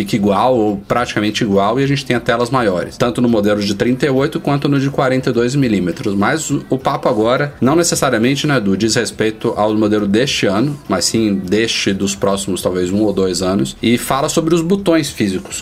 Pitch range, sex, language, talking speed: 105-135 Hz, male, Portuguese, 195 wpm